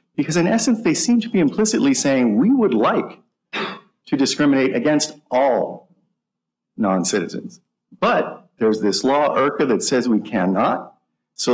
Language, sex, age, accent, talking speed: English, male, 50-69, American, 140 wpm